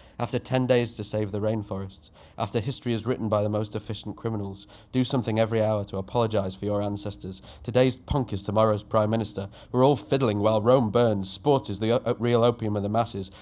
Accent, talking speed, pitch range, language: British, 200 wpm, 105-125 Hz, English